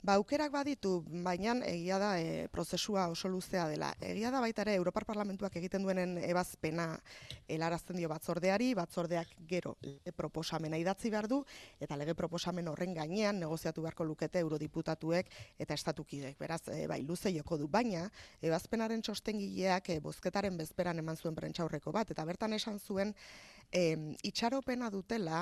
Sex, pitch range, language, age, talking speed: female, 160-195 Hz, Spanish, 20-39, 150 wpm